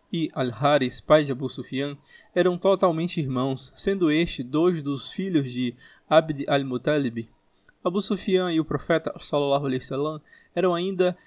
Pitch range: 130-170 Hz